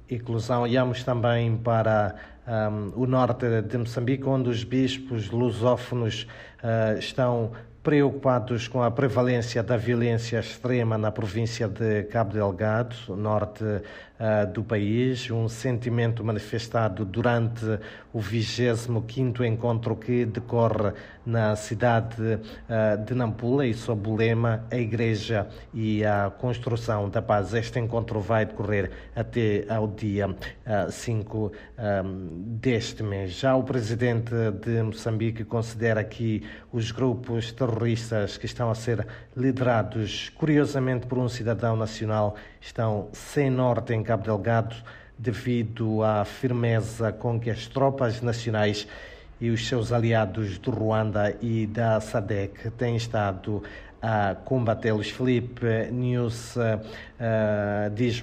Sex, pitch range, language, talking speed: male, 105-120 Hz, Portuguese, 115 wpm